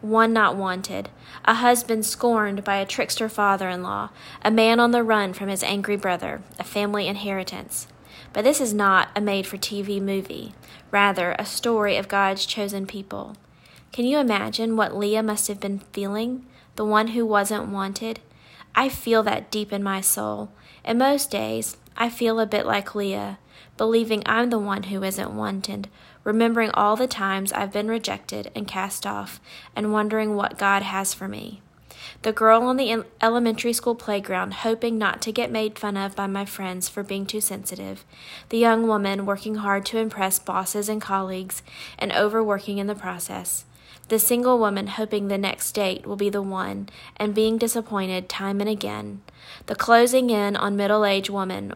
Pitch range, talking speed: 195-220 Hz, 175 wpm